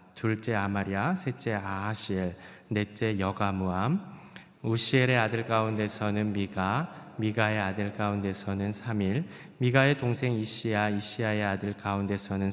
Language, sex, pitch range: Korean, male, 100-125 Hz